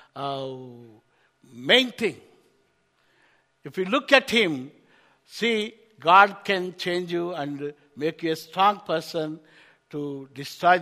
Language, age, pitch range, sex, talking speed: English, 60-79, 150-195 Hz, male, 115 wpm